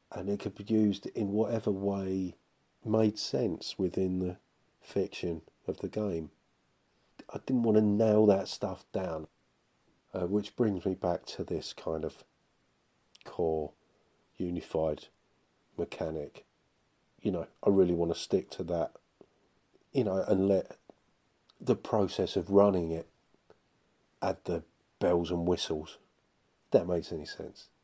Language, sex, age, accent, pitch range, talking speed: English, male, 40-59, British, 85-105 Hz, 140 wpm